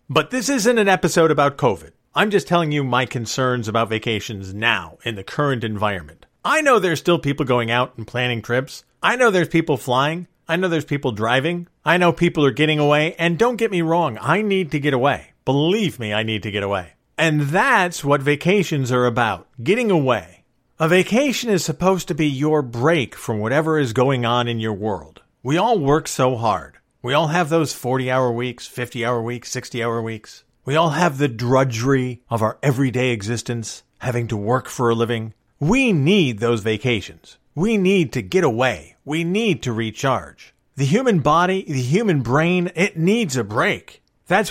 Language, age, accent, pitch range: English, 50-69, American, 120-175 Hz